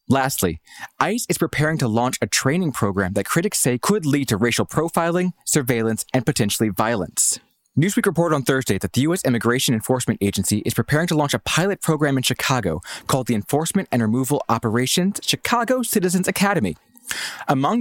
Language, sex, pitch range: English, male, 115-170 Hz